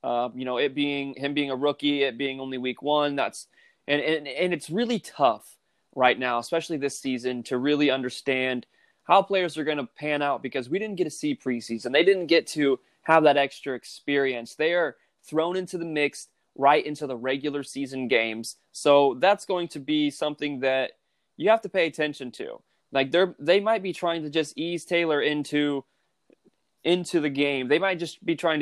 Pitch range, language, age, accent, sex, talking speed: 130-160 Hz, English, 20-39, American, male, 195 wpm